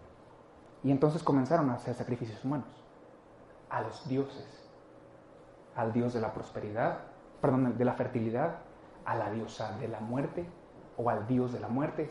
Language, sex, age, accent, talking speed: Spanish, male, 30-49, Mexican, 155 wpm